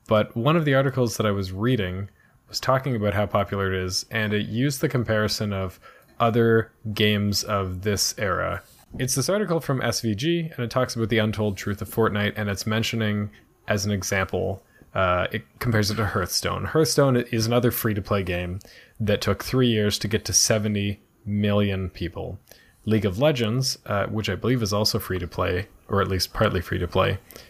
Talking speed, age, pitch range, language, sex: 180 wpm, 20-39, 100-120 Hz, English, male